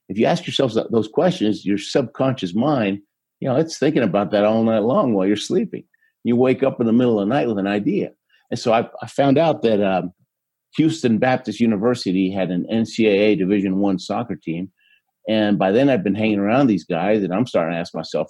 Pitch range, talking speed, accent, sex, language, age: 100-125 Hz, 215 wpm, American, male, English, 50-69